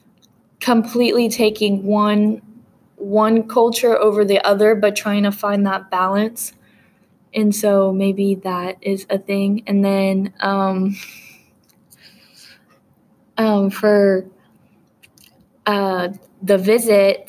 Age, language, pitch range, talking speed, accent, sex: 10-29, English, 195-220 Hz, 100 wpm, American, female